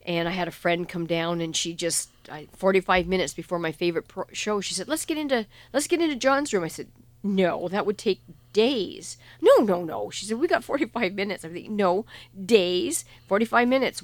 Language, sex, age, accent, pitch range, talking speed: English, female, 50-69, American, 170-220 Hz, 215 wpm